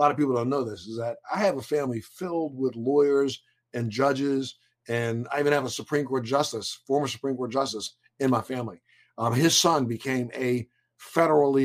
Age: 50-69